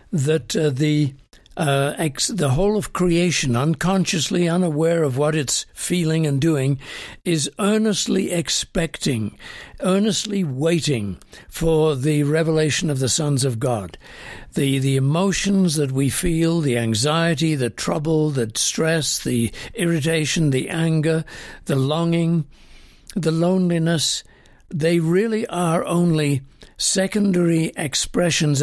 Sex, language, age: male, English, 60-79